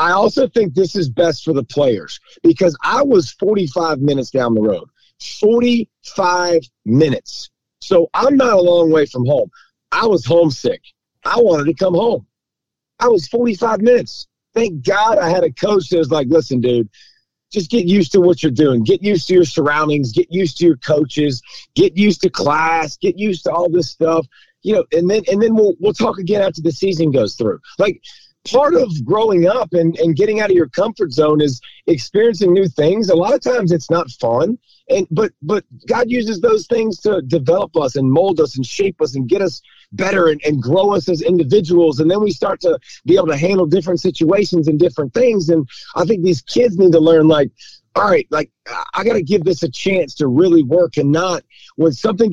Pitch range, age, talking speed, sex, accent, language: 155-210 Hz, 40-59, 210 wpm, male, American, English